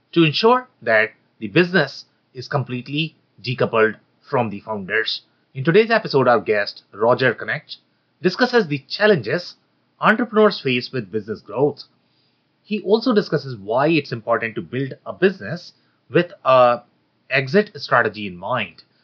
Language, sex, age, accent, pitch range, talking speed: English, male, 30-49, Indian, 120-175 Hz, 130 wpm